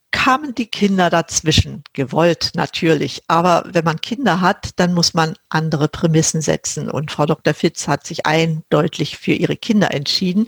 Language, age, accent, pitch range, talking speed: German, 50-69, German, 160-210 Hz, 160 wpm